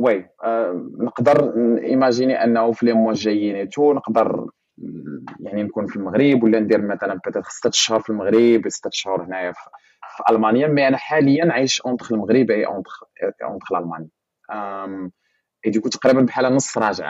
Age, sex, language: 20-39, male, English